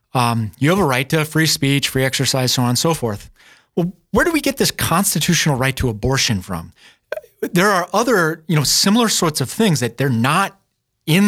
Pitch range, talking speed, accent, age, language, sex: 120-160 Hz, 205 wpm, American, 30-49, English, male